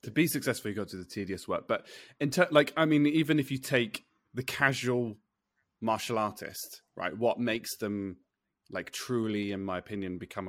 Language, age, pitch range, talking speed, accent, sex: English, 20-39, 100-130 Hz, 190 wpm, British, male